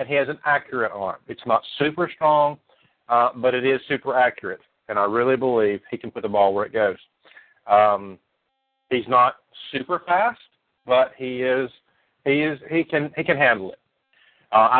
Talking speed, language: 185 wpm, English